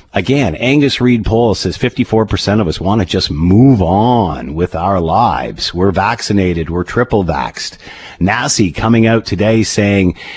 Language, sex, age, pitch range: English, male, 50-69, 100-145 Hz